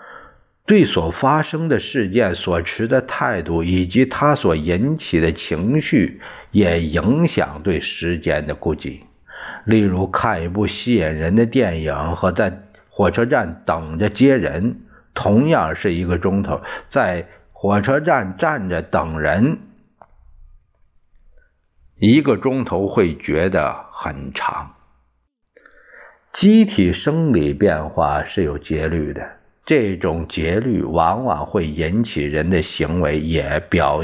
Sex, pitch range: male, 80-115 Hz